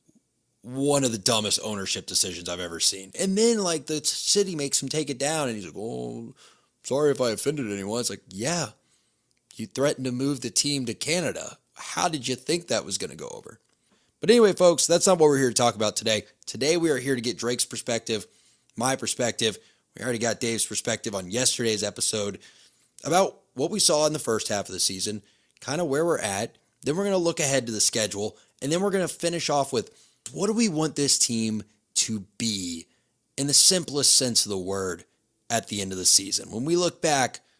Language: English